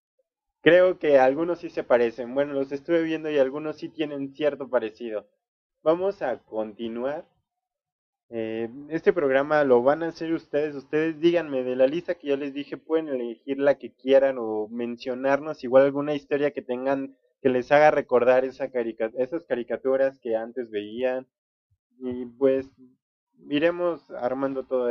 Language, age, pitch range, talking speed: Spanish, 20-39, 125-165 Hz, 155 wpm